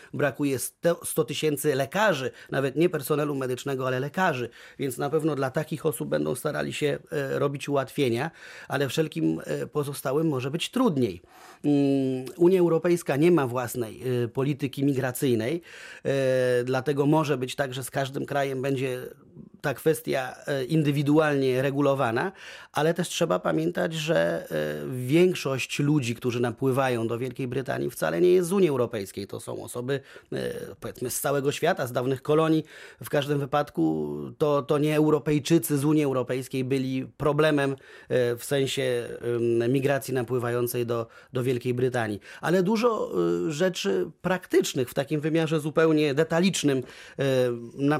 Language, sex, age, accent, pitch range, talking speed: Polish, male, 30-49, native, 130-155 Hz, 130 wpm